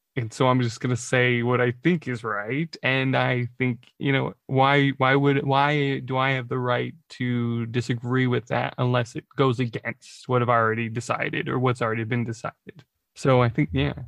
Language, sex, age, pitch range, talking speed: English, male, 20-39, 125-160 Hz, 205 wpm